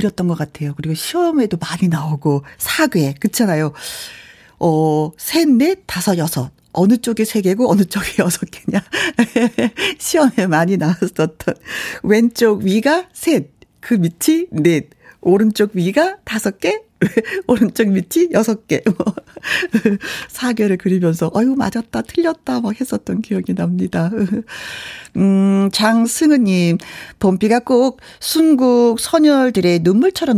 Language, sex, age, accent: Korean, female, 50-69, native